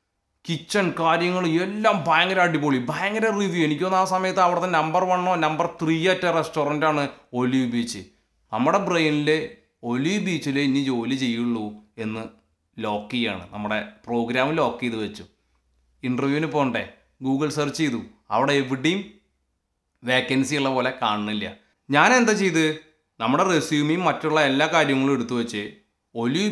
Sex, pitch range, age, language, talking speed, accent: male, 120-170 Hz, 30-49, Malayalam, 125 wpm, native